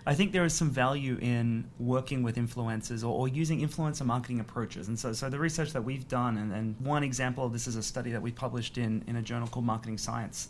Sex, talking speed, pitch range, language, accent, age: male, 245 wpm, 115-140 Hz, English, Australian, 30-49